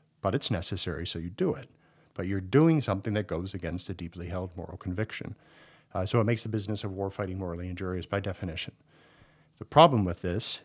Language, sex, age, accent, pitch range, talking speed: English, male, 50-69, American, 95-115 Hz, 195 wpm